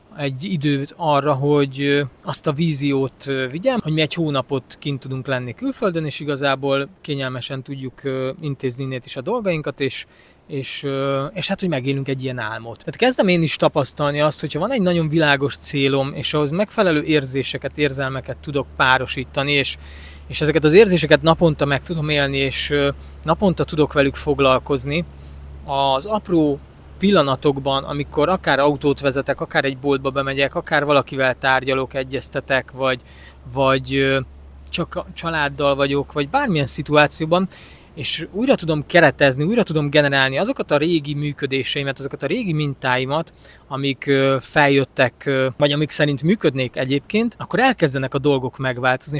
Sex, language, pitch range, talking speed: male, Hungarian, 135-155 Hz, 145 wpm